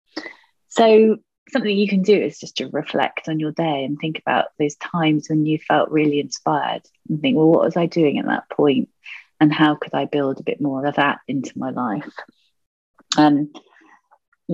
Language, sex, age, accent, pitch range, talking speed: English, female, 30-49, British, 145-185 Hz, 195 wpm